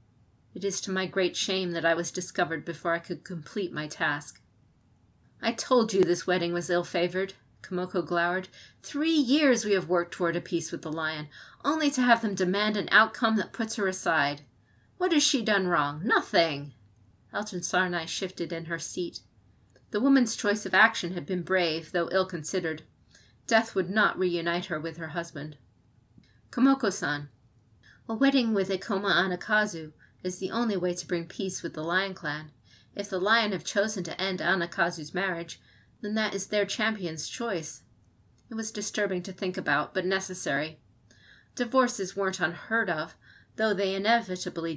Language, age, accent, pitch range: English, 40-59, American, 160-205 Hz